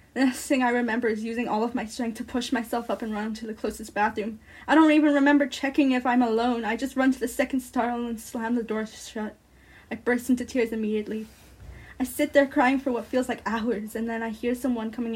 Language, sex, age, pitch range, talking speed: English, female, 10-29, 220-280 Hz, 240 wpm